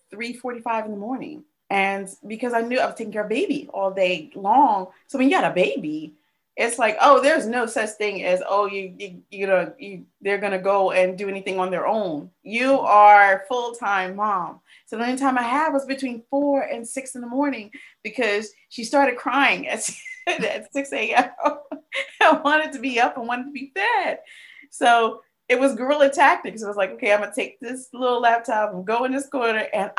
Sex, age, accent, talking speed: female, 30-49, American, 210 wpm